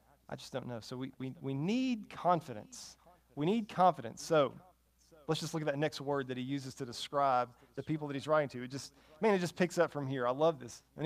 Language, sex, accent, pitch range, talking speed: English, male, American, 130-175 Hz, 245 wpm